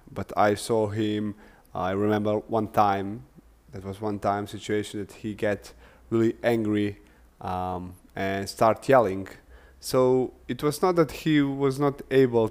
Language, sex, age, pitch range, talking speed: English, male, 20-39, 100-120 Hz, 155 wpm